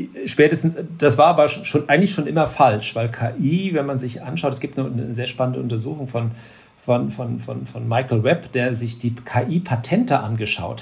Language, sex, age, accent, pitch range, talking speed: German, male, 40-59, German, 120-150 Hz, 160 wpm